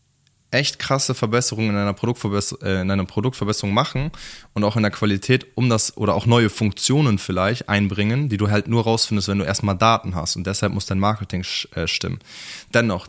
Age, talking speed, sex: 20-39, 195 wpm, male